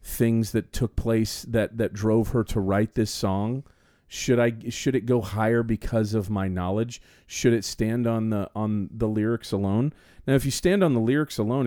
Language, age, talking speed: English, 40-59, 200 wpm